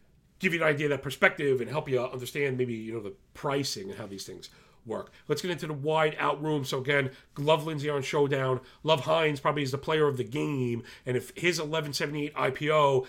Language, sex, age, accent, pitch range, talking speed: English, male, 40-59, American, 130-160 Hz, 215 wpm